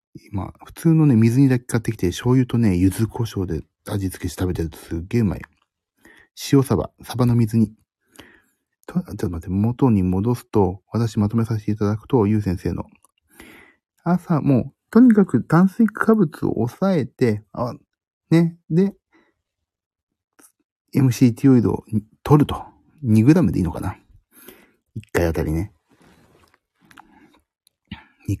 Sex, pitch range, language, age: male, 95-135 Hz, Japanese, 40-59